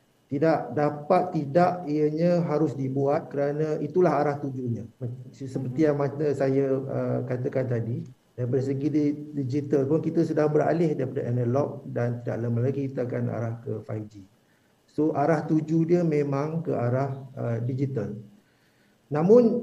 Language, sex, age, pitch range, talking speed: Malay, male, 50-69, 135-160 Hz, 135 wpm